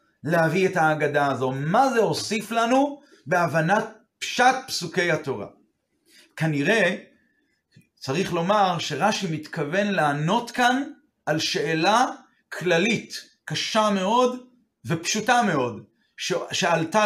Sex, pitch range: male, 155-210 Hz